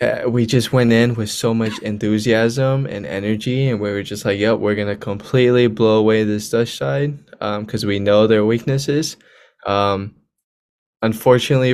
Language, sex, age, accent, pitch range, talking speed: English, male, 10-29, American, 100-115 Hz, 165 wpm